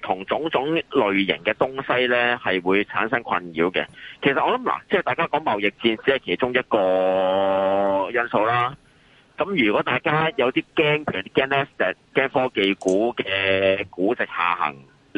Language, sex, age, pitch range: Chinese, male, 30-49, 95-140 Hz